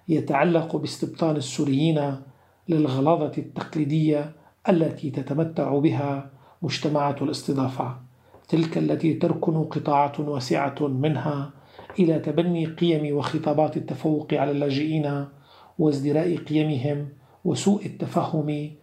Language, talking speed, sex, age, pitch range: Arabic, 85 wpm, male, 40-59, 145-160 Hz